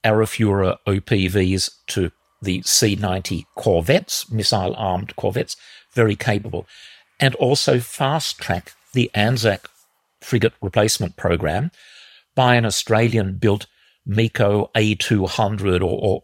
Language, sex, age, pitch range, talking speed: English, male, 50-69, 95-125 Hz, 90 wpm